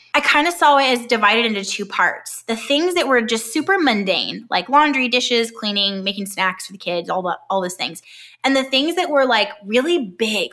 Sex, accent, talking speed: female, American, 220 wpm